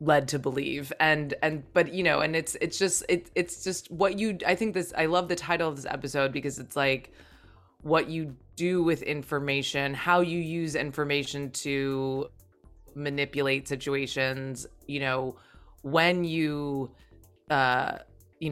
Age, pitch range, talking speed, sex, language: 20-39, 130-160 Hz, 155 wpm, female, English